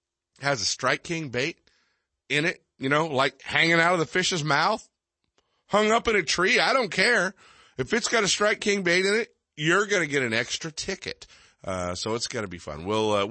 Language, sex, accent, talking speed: English, male, American, 220 wpm